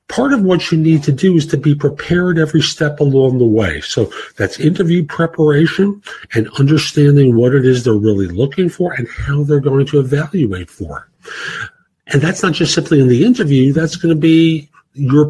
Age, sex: 50-69, male